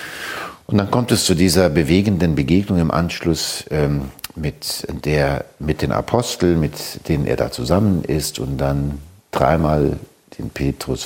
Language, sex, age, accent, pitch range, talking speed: German, male, 60-79, German, 70-85 Hz, 145 wpm